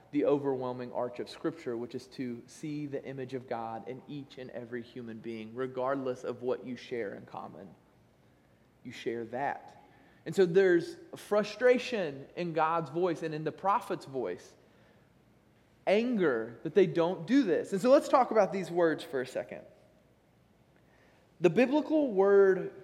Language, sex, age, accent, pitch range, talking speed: English, male, 20-39, American, 140-195 Hz, 160 wpm